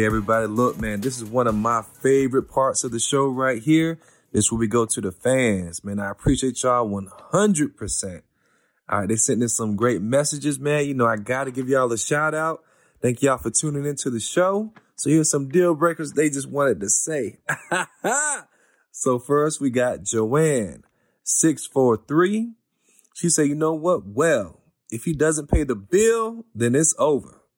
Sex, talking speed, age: male, 185 wpm, 30-49